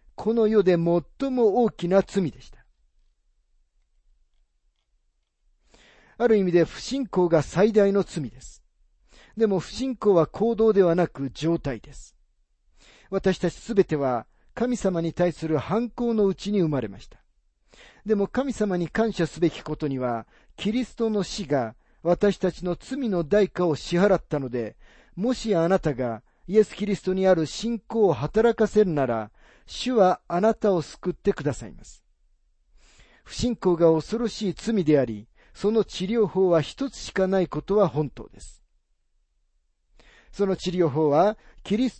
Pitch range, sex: 125-210 Hz, male